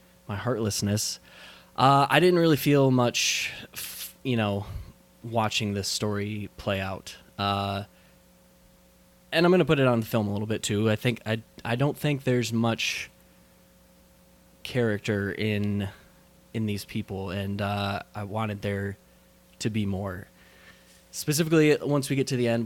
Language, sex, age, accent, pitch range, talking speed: English, male, 20-39, American, 100-125 Hz, 145 wpm